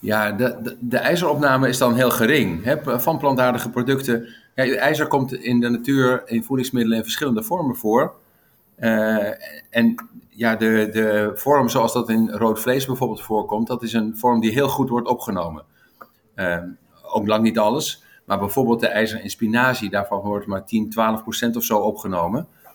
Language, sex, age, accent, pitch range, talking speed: Dutch, male, 50-69, Dutch, 110-125 Hz, 165 wpm